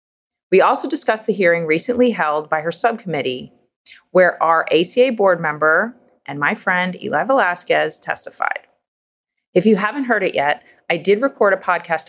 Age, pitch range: 30-49, 155-210 Hz